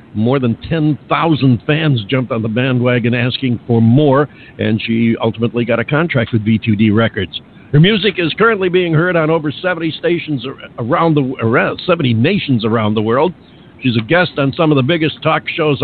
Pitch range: 120-160 Hz